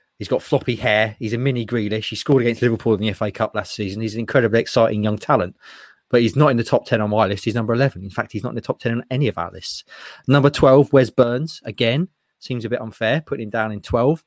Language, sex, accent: English, male, British